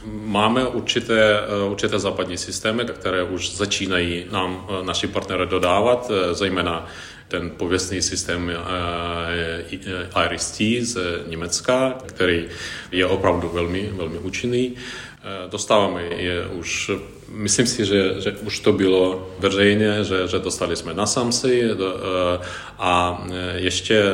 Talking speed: 120 wpm